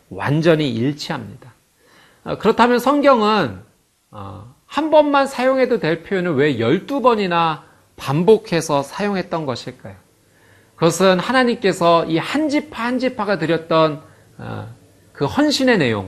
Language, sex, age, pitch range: Korean, male, 40-59, 115-190 Hz